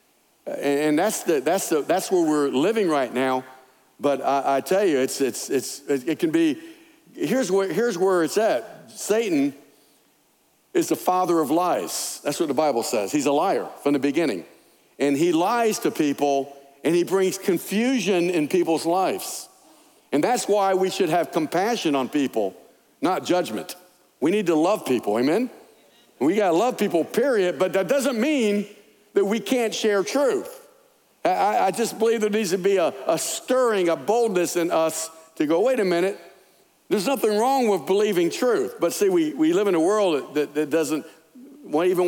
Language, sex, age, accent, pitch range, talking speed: English, male, 60-79, American, 160-270 Hz, 175 wpm